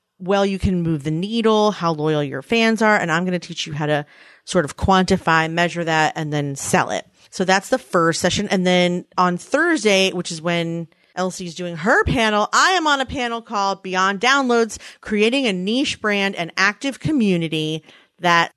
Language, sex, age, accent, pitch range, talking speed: English, female, 30-49, American, 165-215 Hz, 195 wpm